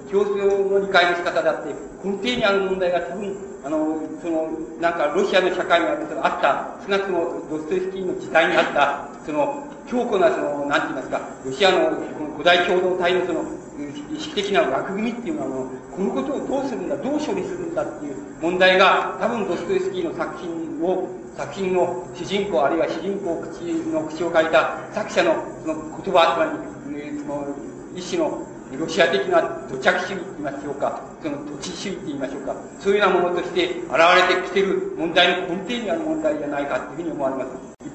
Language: Japanese